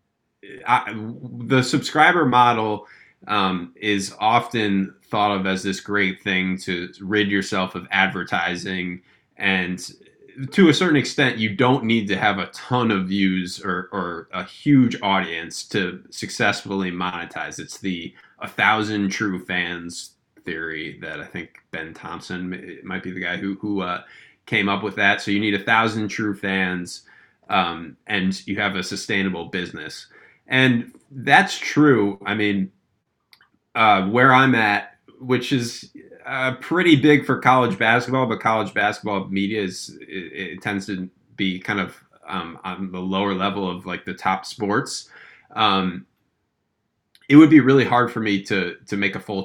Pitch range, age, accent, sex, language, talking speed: 95-120 Hz, 20-39, American, male, English, 155 wpm